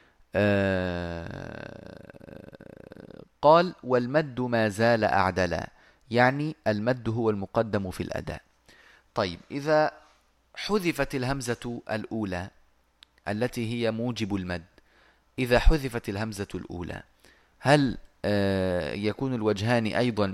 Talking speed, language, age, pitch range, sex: 85 wpm, Arabic, 30-49, 100-120 Hz, male